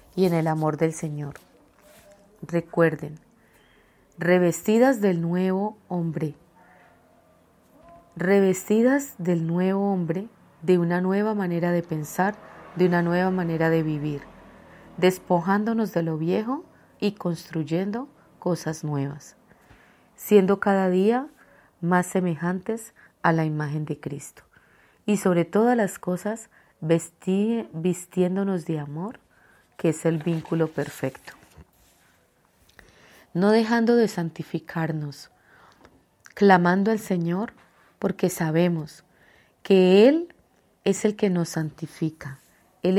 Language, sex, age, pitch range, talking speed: Spanish, female, 30-49, 165-200 Hz, 105 wpm